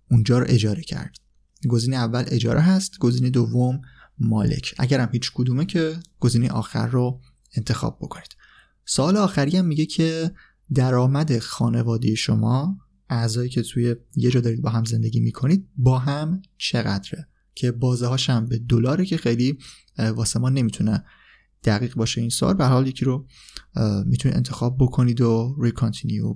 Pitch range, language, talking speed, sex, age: 115-135 Hz, Persian, 145 wpm, male, 20-39